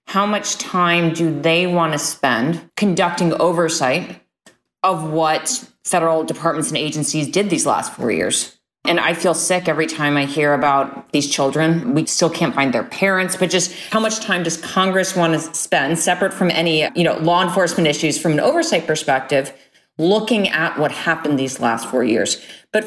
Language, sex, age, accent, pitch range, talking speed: English, female, 30-49, American, 155-195 Hz, 180 wpm